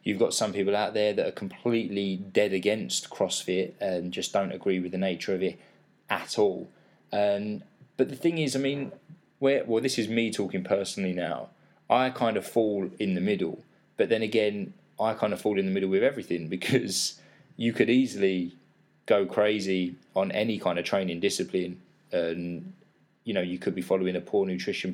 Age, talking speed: 20-39, 190 wpm